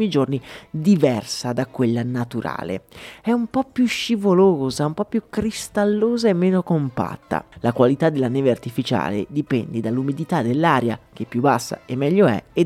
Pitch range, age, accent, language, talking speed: 125-190 Hz, 30-49, native, Italian, 150 wpm